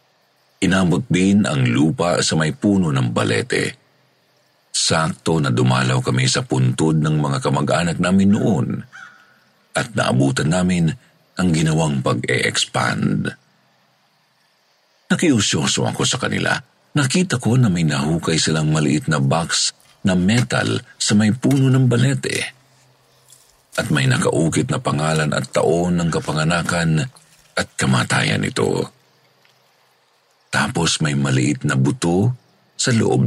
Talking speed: 120 wpm